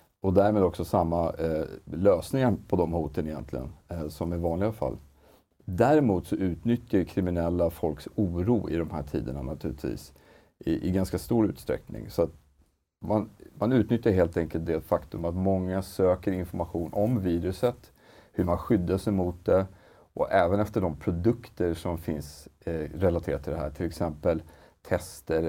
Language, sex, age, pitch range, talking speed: Swedish, male, 40-59, 80-95 Hz, 160 wpm